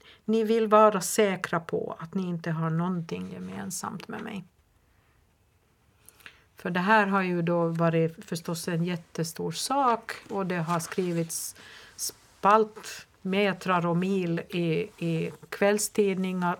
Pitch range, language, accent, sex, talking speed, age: 165-190 Hz, Swedish, native, female, 125 wpm, 50-69